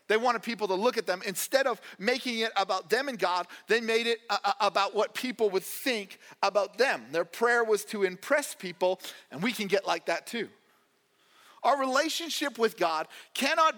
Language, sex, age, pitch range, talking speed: English, male, 40-59, 190-250 Hz, 185 wpm